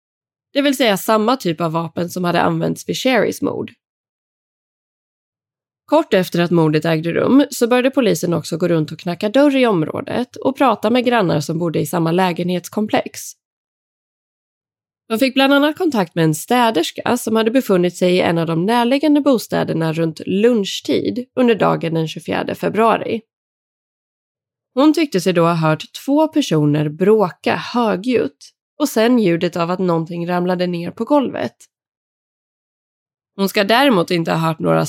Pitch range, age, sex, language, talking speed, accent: 170-250 Hz, 20-39, female, Swedish, 155 wpm, native